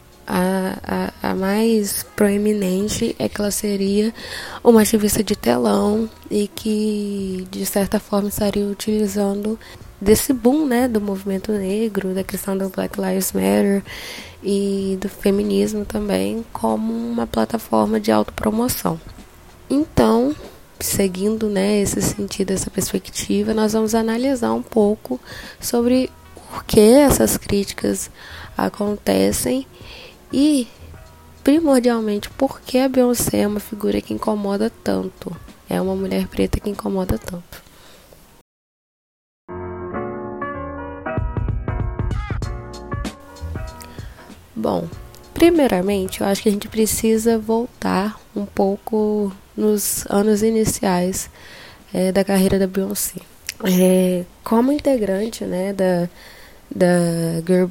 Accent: Brazilian